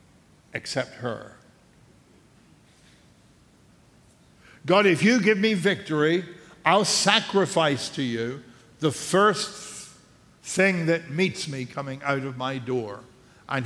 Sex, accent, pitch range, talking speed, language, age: male, American, 130-175 Hz, 105 wpm, English, 60-79